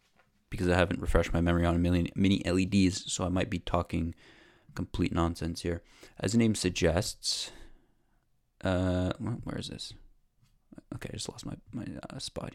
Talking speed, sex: 165 wpm, male